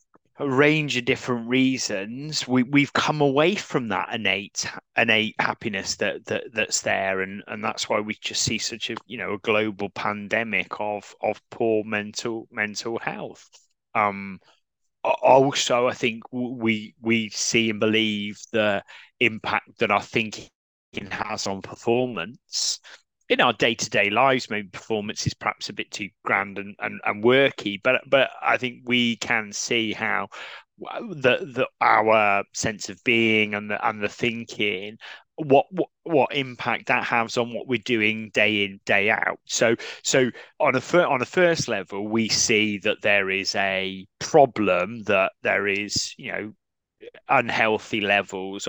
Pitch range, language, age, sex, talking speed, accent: 105-125 Hz, English, 30-49, male, 155 wpm, British